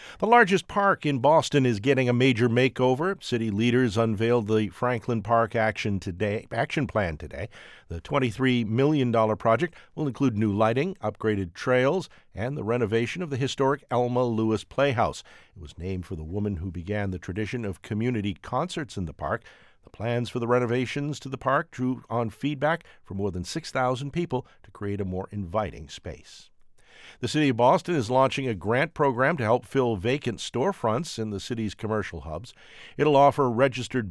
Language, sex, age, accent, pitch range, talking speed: English, male, 50-69, American, 105-135 Hz, 175 wpm